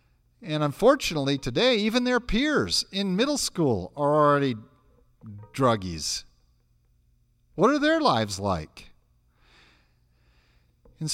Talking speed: 95 wpm